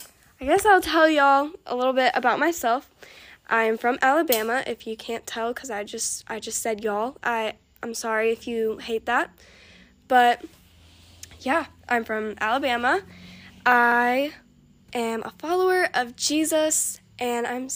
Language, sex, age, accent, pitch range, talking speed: English, female, 10-29, American, 230-310 Hz, 150 wpm